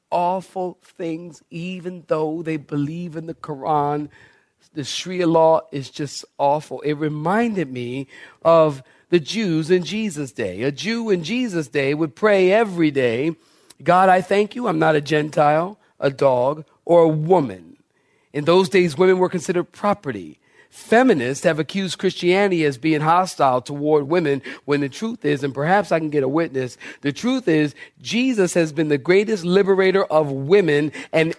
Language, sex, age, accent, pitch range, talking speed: English, male, 40-59, American, 155-220 Hz, 160 wpm